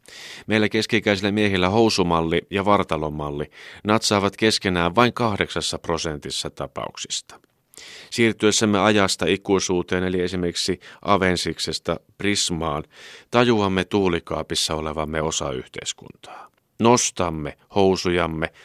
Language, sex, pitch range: Finnish, male, 80-105 Hz